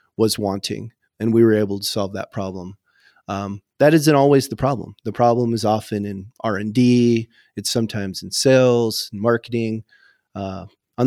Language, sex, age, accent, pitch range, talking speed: English, male, 30-49, American, 100-120 Hz, 155 wpm